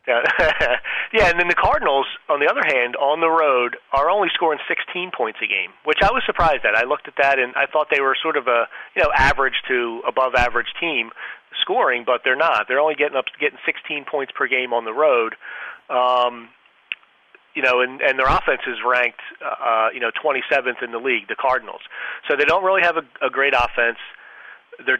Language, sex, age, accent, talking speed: English, male, 40-59, American, 210 wpm